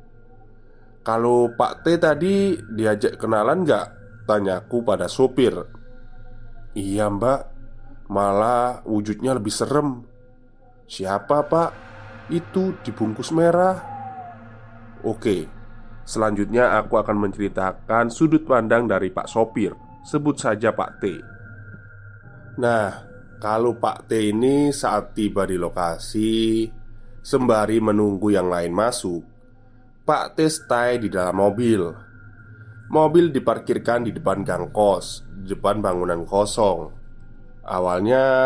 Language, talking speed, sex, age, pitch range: Indonesian, 105 wpm, male, 20-39, 105-125 Hz